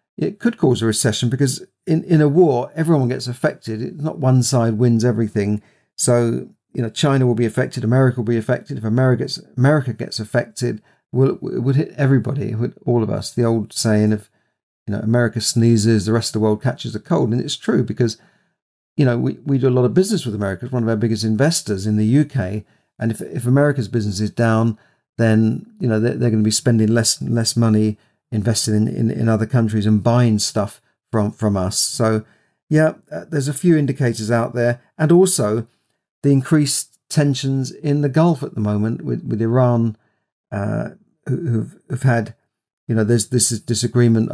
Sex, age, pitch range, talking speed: male, 50-69, 110-130 Hz, 205 wpm